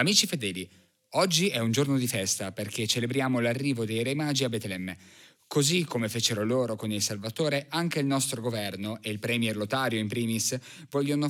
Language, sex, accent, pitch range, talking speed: Italian, male, native, 105-135 Hz, 180 wpm